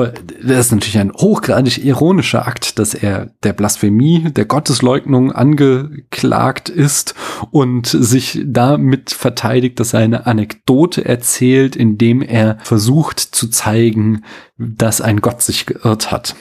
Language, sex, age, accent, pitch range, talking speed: German, male, 40-59, German, 110-140 Hz, 130 wpm